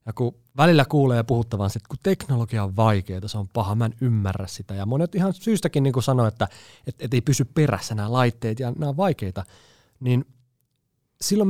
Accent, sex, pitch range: native, male, 110-150 Hz